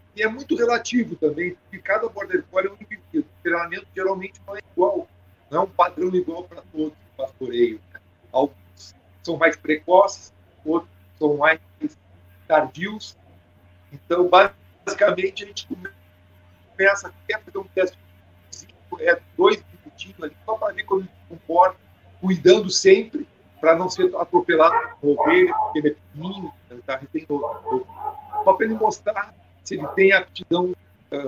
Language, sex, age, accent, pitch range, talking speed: Portuguese, male, 50-69, Brazilian, 145-235 Hz, 140 wpm